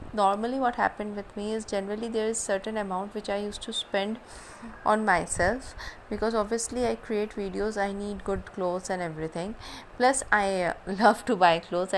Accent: native